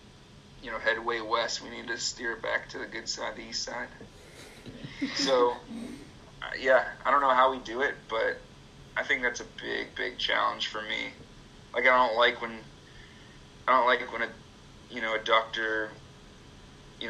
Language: English